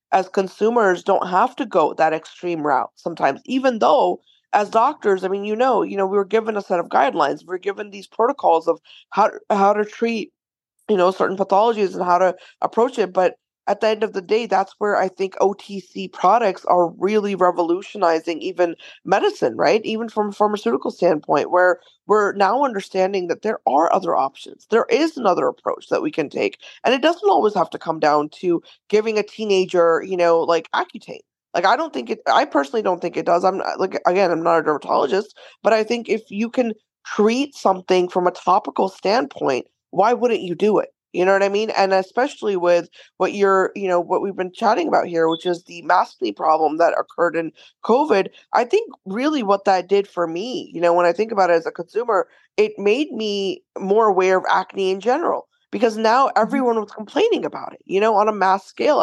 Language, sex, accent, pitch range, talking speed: English, female, American, 180-225 Hz, 205 wpm